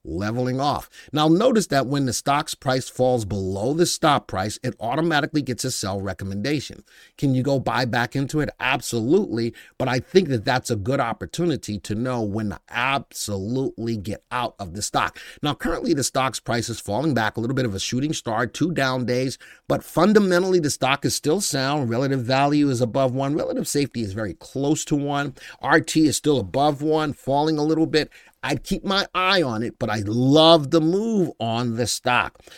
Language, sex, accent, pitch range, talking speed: English, male, American, 115-150 Hz, 195 wpm